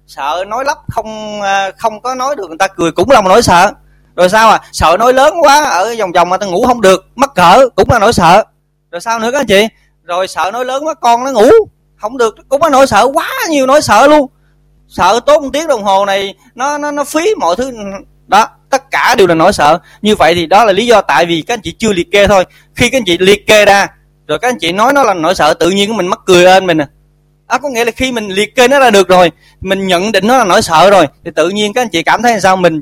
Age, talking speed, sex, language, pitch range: 20-39, 280 wpm, male, Vietnamese, 170-250 Hz